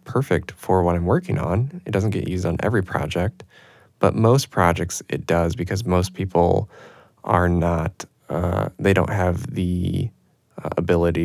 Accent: American